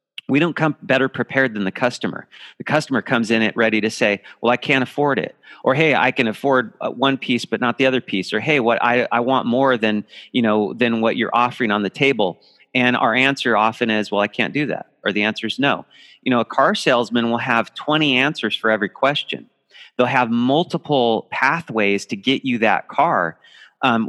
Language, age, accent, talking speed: English, 40-59, American, 215 wpm